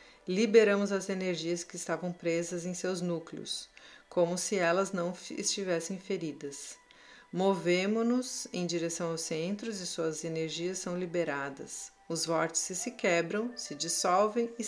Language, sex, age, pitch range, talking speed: Portuguese, female, 40-59, 170-200 Hz, 130 wpm